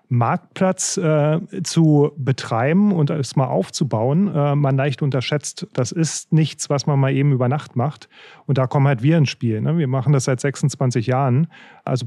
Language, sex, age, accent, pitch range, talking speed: German, male, 30-49, German, 135-155 Hz, 180 wpm